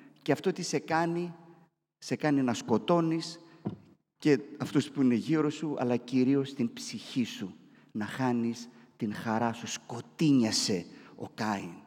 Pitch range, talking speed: 115-160 Hz, 140 wpm